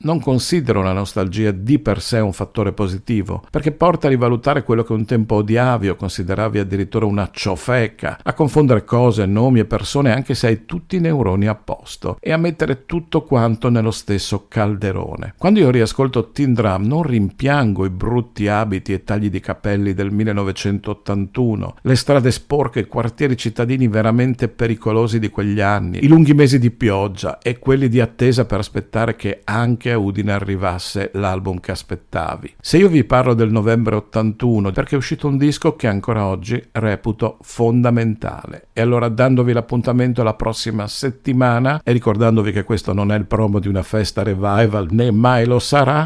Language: Italian